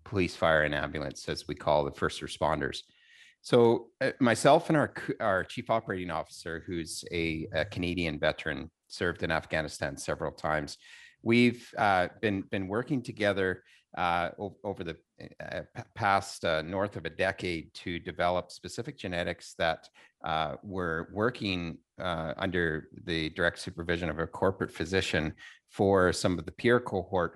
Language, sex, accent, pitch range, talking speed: English, male, American, 85-105 Hz, 150 wpm